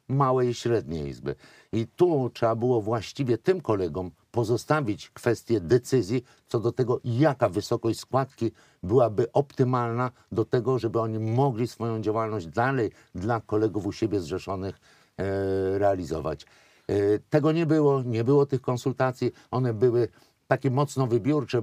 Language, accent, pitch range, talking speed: Polish, native, 105-130 Hz, 135 wpm